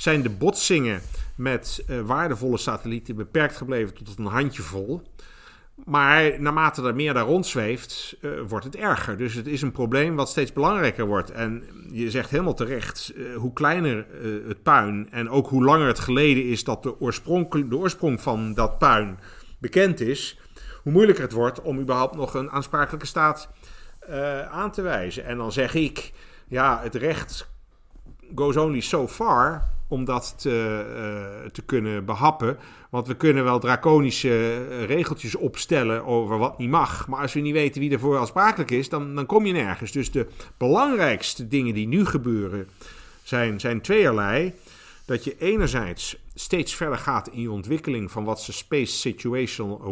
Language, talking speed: Dutch, 165 wpm